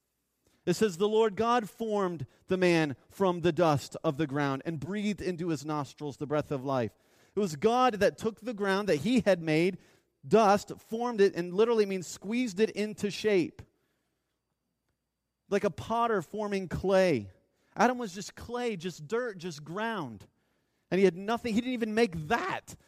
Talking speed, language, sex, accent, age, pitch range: 175 wpm, English, male, American, 30-49, 165-225 Hz